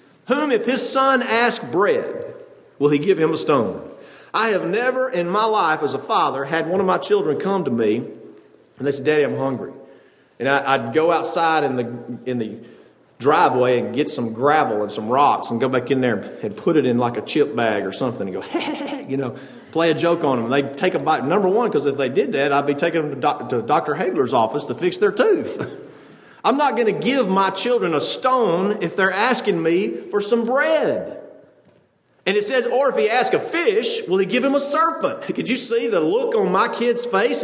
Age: 40-59